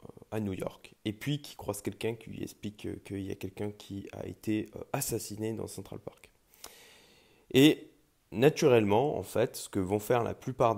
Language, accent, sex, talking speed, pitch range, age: French, French, male, 180 wpm, 100-130 Hz, 20-39